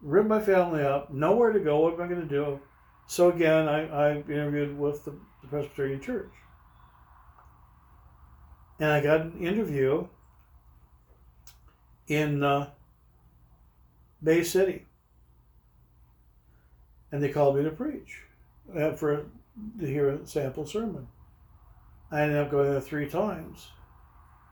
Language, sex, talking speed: English, male, 125 wpm